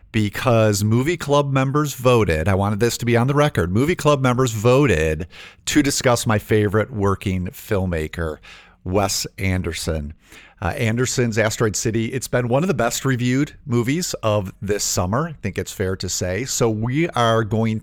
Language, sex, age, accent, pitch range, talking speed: English, male, 50-69, American, 95-125 Hz, 170 wpm